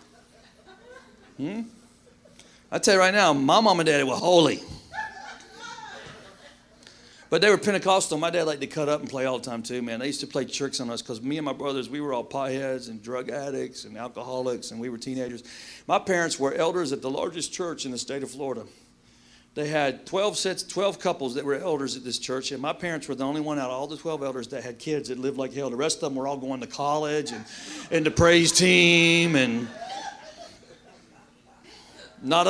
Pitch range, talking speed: 130-170 Hz, 210 wpm